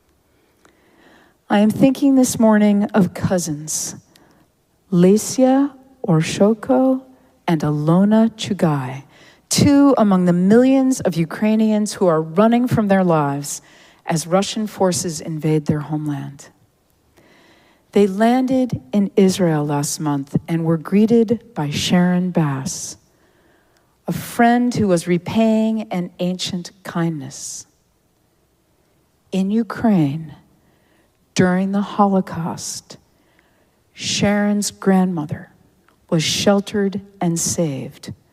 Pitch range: 165-210 Hz